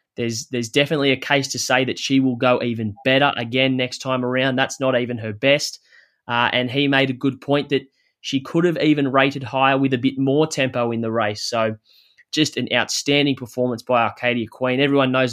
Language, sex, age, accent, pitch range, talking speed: English, male, 20-39, Australian, 120-140 Hz, 210 wpm